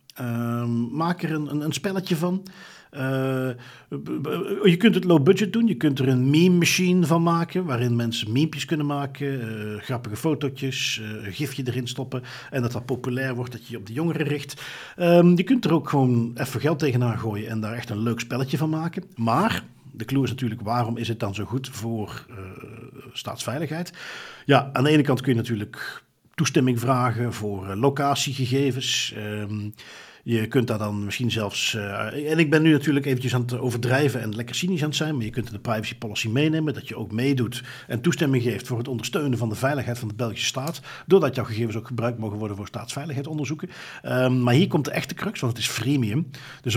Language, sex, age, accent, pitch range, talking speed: Dutch, male, 50-69, Dutch, 115-150 Hz, 205 wpm